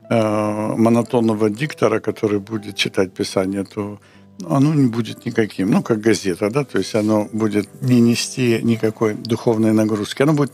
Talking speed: 150 wpm